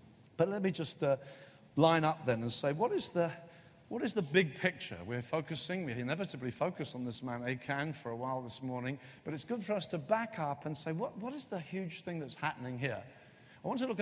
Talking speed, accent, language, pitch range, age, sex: 235 wpm, British, English, 130-175 Hz, 50-69, male